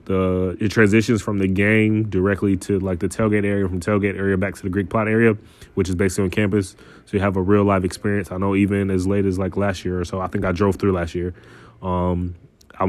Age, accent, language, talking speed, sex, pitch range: 20-39, American, English, 245 wpm, male, 95-100 Hz